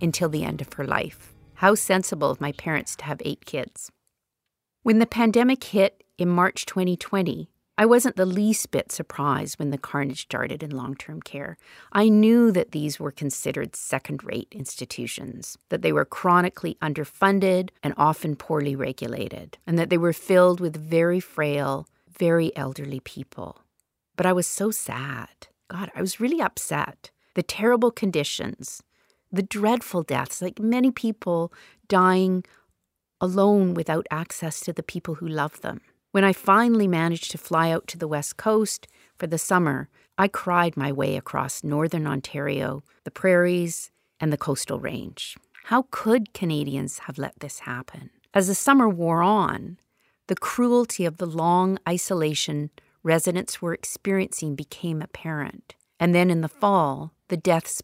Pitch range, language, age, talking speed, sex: 150-195 Hz, English, 40-59, 155 wpm, female